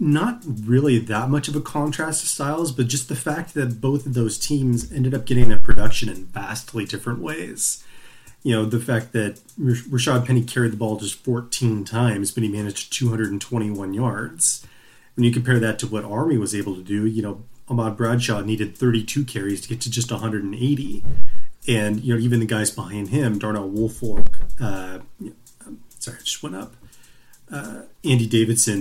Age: 30-49